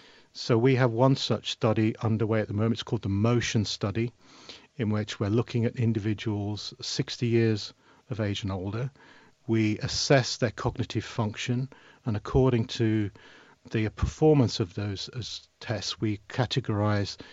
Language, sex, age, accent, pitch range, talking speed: English, male, 50-69, British, 105-125 Hz, 145 wpm